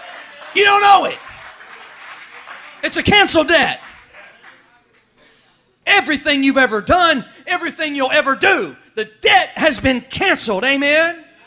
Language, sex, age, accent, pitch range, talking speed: English, male, 40-59, American, 265-355 Hz, 115 wpm